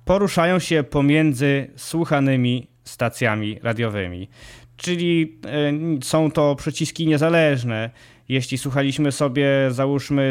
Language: Polish